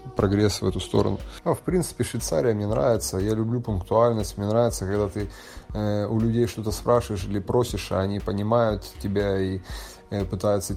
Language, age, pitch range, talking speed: Russian, 20-39, 100-115 Hz, 175 wpm